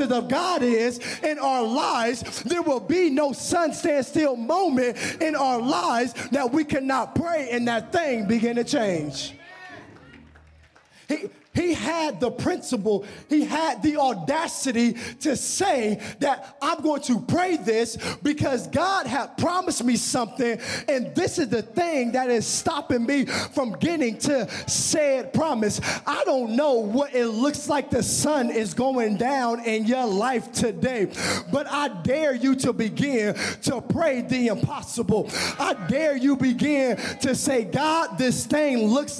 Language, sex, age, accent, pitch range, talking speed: English, male, 20-39, American, 235-295 Hz, 155 wpm